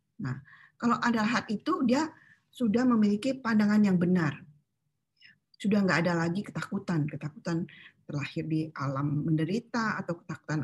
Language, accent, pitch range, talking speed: Indonesian, native, 165-235 Hz, 130 wpm